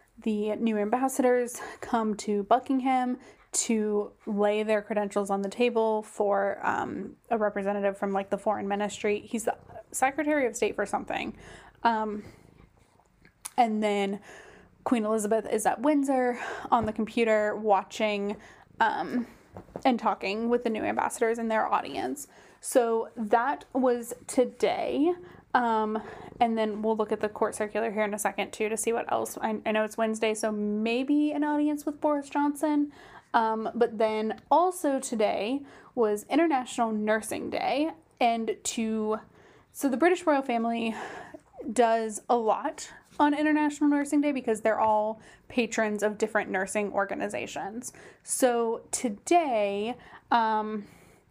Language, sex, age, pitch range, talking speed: English, female, 10-29, 215-260 Hz, 140 wpm